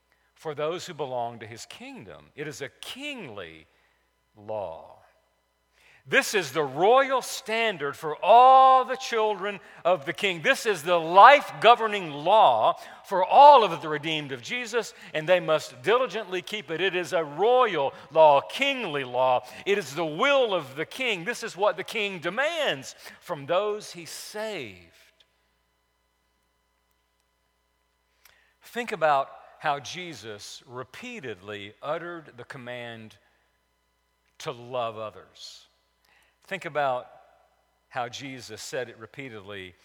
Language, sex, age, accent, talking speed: English, male, 50-69, American, 125 wpm